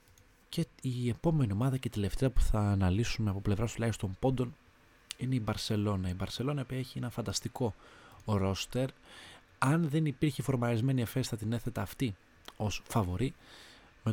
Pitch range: 95-120 Hz